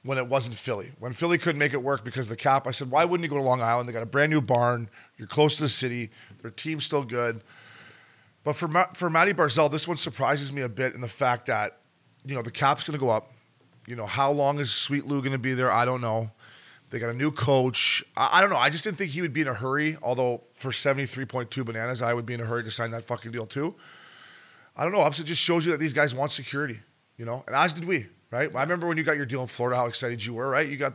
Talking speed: 285 wpm